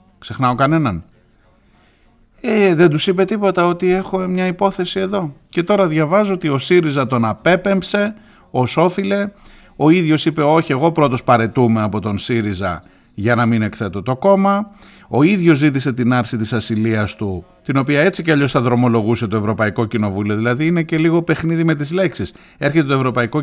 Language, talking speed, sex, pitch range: Greek, 170 wpm, male, 115-170 Hz